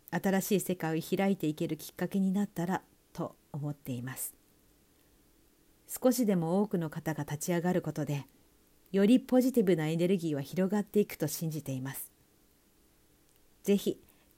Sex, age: female, 50-69